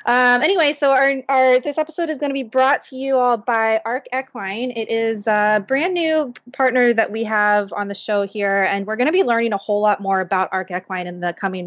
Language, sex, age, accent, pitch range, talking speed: English, female, 20-39, American, 190-235 Hz, 240 wpm